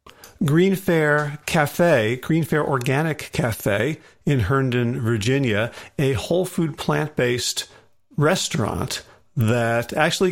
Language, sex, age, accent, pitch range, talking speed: English, male, 50-69, American, 120-155 Hz, 100 wpm